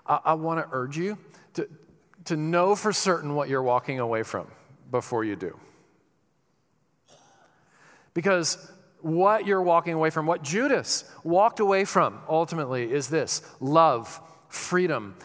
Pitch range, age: 150-175 Hz, 40-59